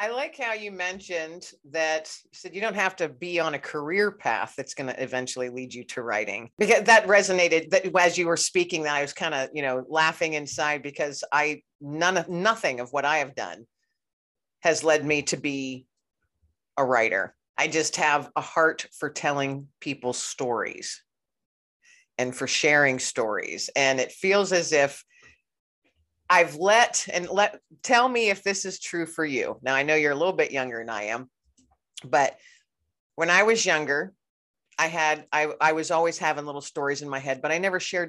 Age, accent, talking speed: 50-69, American, 190 wpm